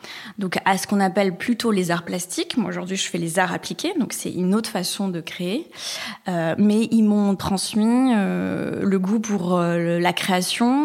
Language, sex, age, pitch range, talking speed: French, female, 20-39, 185-220 Hz, 195 wpm